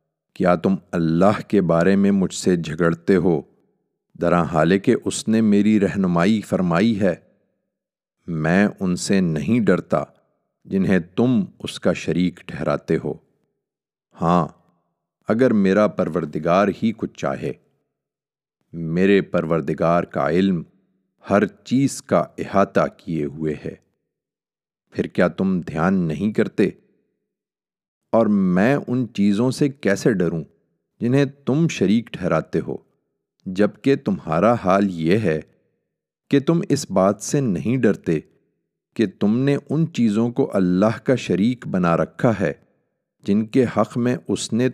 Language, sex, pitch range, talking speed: Urdu, male, 85-135 Hz, 130 wpm